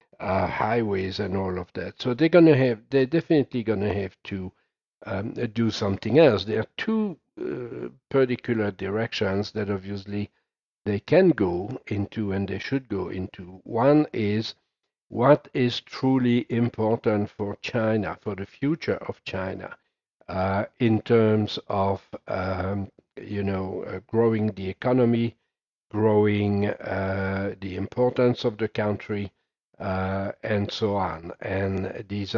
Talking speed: 140 wpm